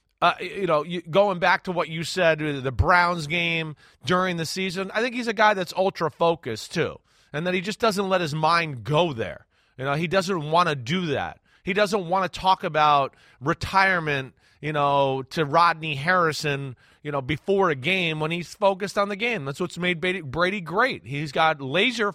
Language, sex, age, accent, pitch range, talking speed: English, male, 30-49, American, 155-215 Hz, 200 wpm